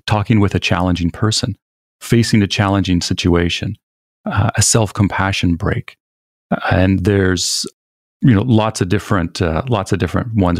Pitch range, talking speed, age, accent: 95-115 Hz, 140 wpm, 40-59, American